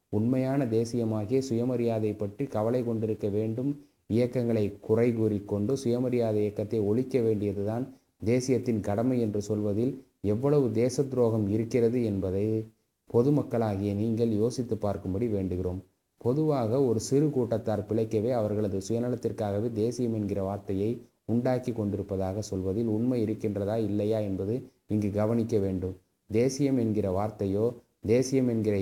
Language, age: Tamil, 20-39